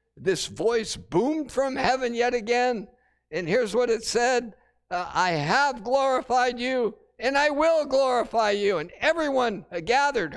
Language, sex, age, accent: English, male, 60-79, American